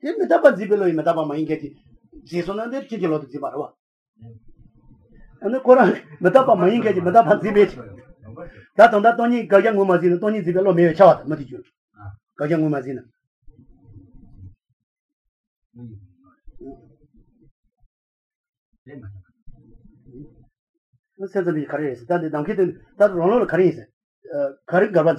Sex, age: male, 40-59